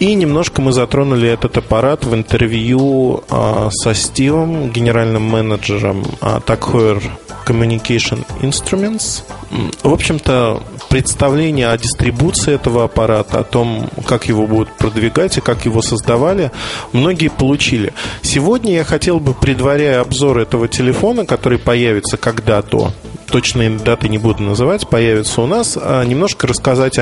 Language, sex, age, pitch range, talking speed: Russian, male, 20-39, 115-140 Hz, 125 wpm